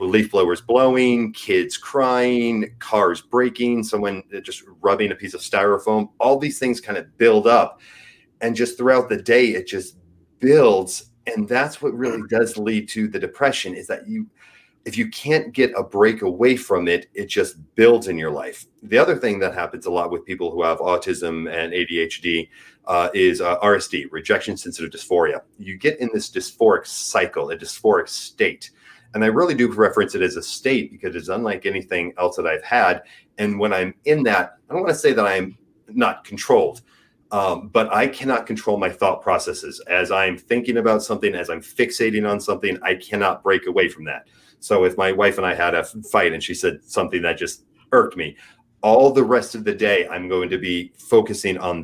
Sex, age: male, 30-49